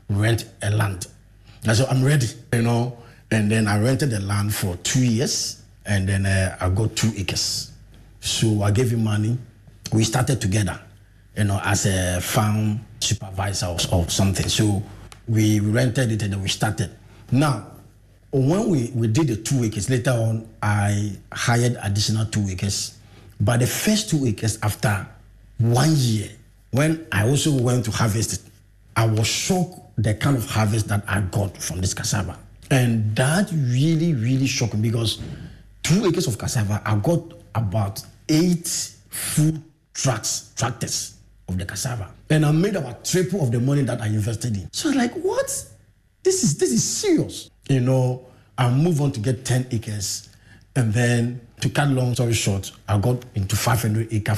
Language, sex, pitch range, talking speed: English, male, 105-125 Hz, 170 wpm